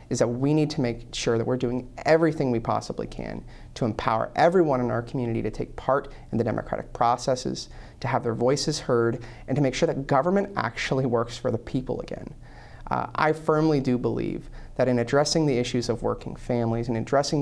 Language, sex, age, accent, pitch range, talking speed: English, male, 30-49, American, 120-140 Hz, 205 wpm